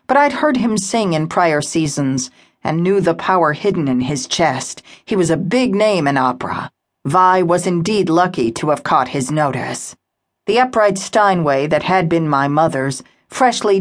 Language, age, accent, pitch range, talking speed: English, 50-69, American, 155-205 Hz, 180 wpm